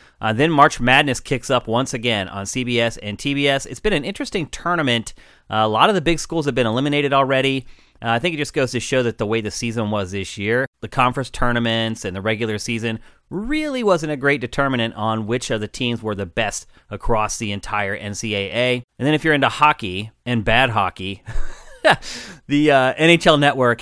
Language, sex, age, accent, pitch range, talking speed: English, male, 30-49, American, 110-135 Hz, 205 wpm